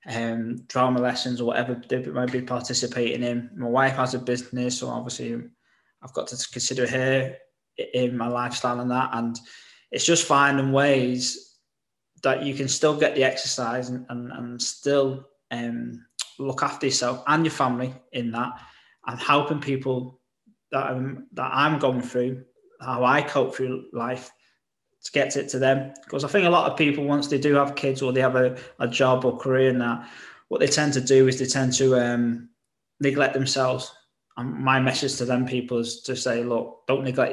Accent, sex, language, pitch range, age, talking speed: British, male, English, 125-140 Hz, 20-39, 190 wpm